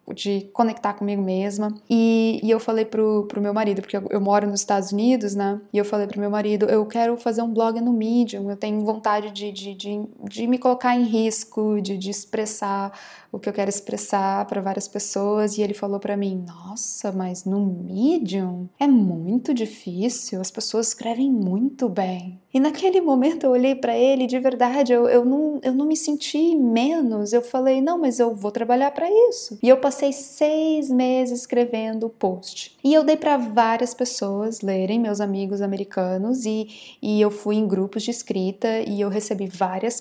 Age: 20-39